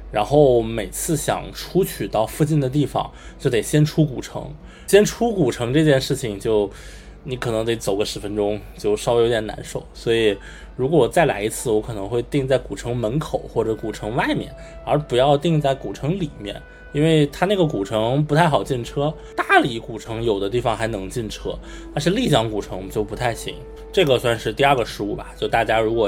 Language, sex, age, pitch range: Chinese, male, 20-39, 110-150 Hz